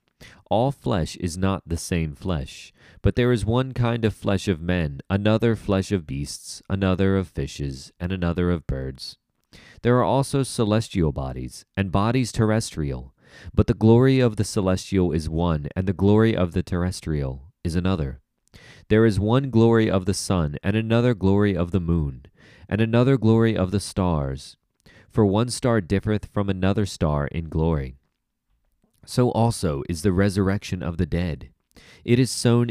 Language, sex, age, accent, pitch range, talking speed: English, male, 30-49, American, 80-110 Hz, 165 wpm